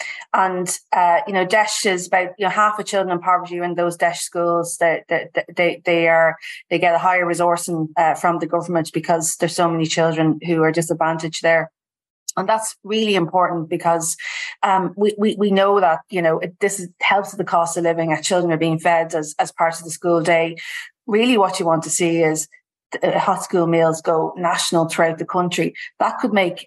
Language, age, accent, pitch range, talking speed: English, 30-49, Irish, 165-185 Hz, 210 wpm